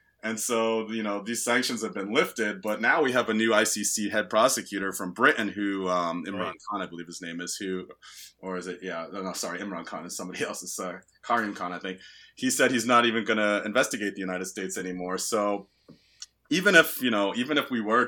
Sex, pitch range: male, 95-115 Hz